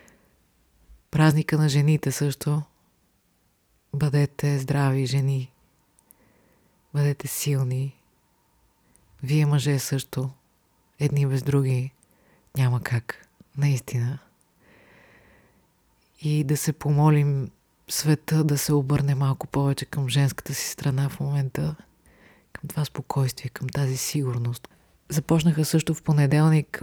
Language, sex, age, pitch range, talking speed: Bulgarian, female, 30-49, 130-150 Hz, 100 wpm